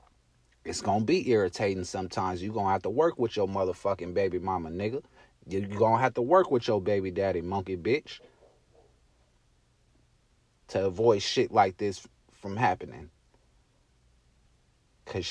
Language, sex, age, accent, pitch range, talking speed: English, male, 30-49, American, 90-125 Hz, 150 wpm